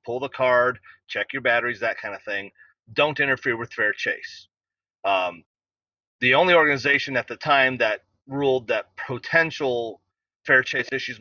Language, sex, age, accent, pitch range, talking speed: English, male, 30-49, American, 105-140 Hz, 155 wpm